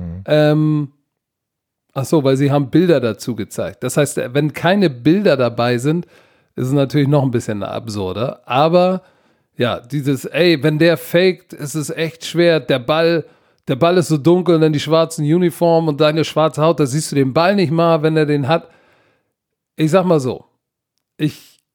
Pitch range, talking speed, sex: 145-175 Hz, 180 wpm, male